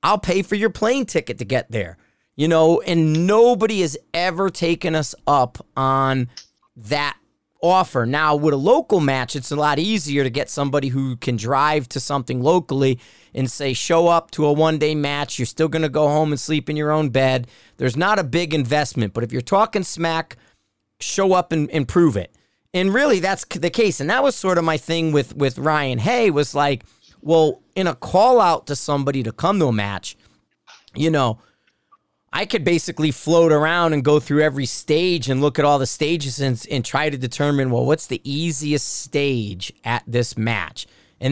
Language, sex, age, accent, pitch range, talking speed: English, male, 40-59, American, 130-170 Hz, 200 wpm